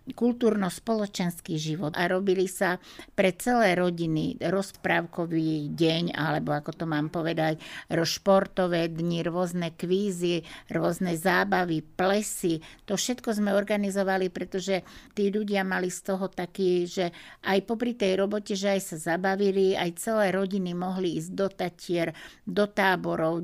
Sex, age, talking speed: female, 50-69, 130 wpm